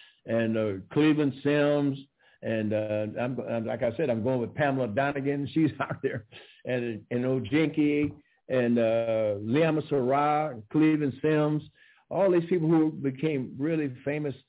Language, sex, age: English, male, 60-79